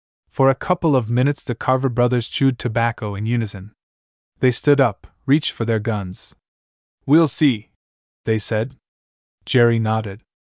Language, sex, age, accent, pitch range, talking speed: English, male, 20-39, American, 100-135 Hz, 140 wpm